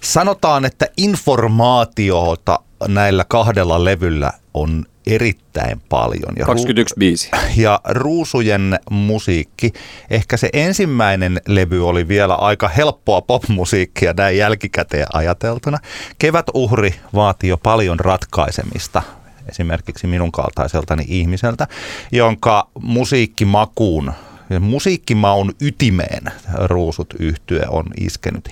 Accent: native